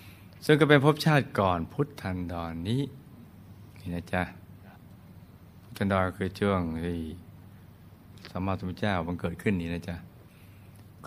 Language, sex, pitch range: Thai, male, 95-115 Hz